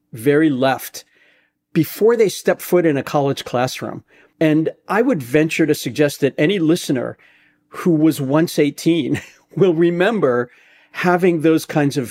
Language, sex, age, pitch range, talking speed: English, male, 50-69, 125-160 Hz, 145 wpm